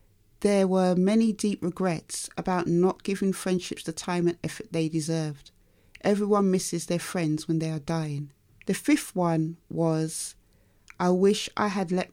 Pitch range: 160-200 Hz